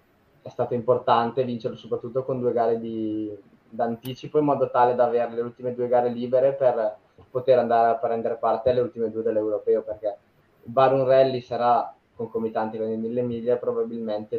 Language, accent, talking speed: Italian, native, 170 wpm